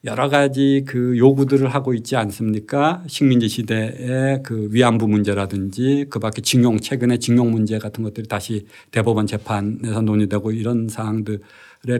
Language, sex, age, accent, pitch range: Korean, male, 50-69, native, 115-145 Hz